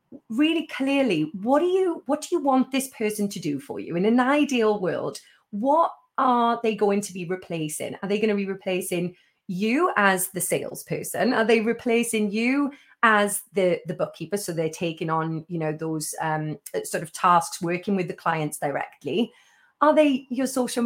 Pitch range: 195-270 Hz